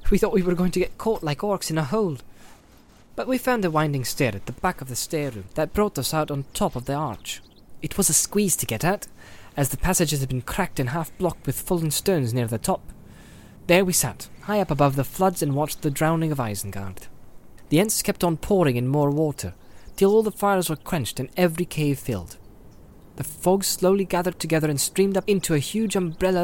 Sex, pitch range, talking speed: male, 125-190 Hz, 225 wpm